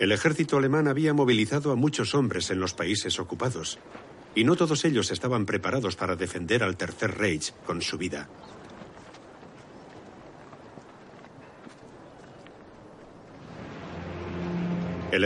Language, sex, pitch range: Spanish, male, 95-135 Hz